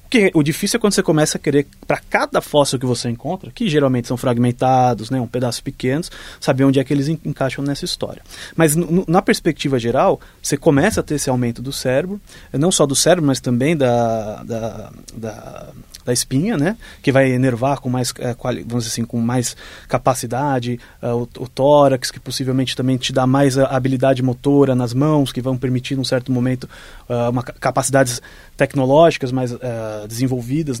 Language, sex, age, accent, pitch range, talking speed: Portuguese, male, 20-39, Brazilian, 125-155 Hz, 170 wpm